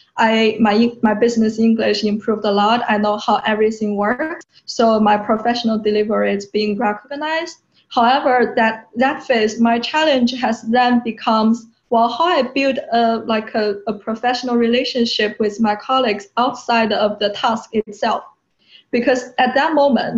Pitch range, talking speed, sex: 215-245 Hz, 150 wpm, female